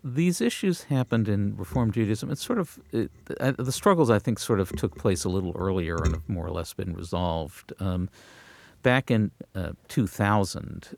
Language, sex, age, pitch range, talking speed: English, male, 50-69, 85-110 Hz, 180 wpm